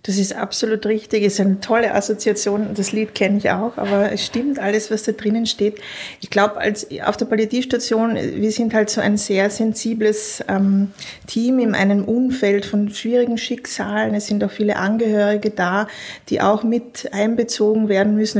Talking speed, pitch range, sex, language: 180 wpm, 195-220 Hz, female, German